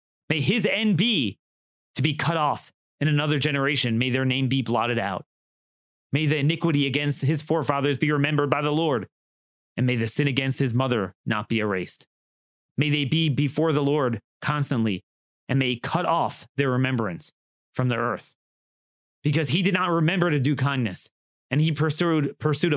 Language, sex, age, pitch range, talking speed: English, male, 30-49, 120-155 Hz, 175 wpm